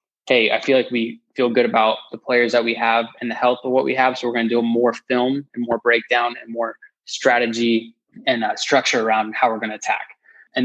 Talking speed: 240 wpm